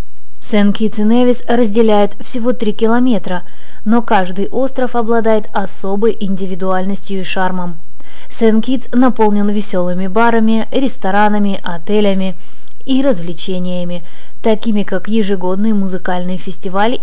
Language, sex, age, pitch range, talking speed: Russian, female, 20-39, 185-230 Hz, 100 wpm